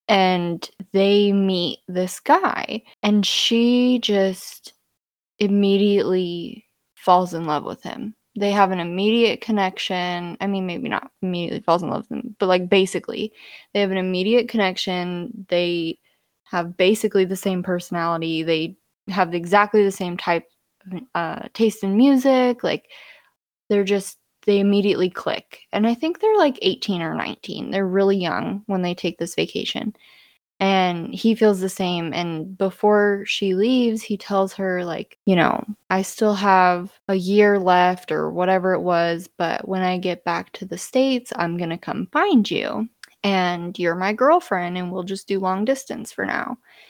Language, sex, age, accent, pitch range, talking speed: English, female, 20-39, American, 180-215 Hz, 160 wpm